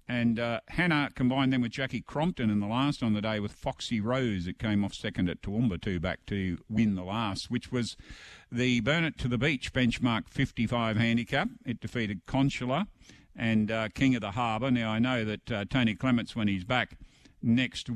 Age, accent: 50-69, Australian